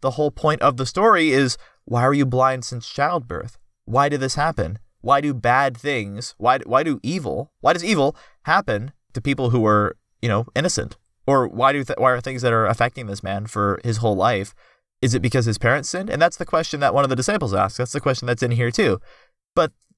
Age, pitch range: 30-49, 120-180 Hz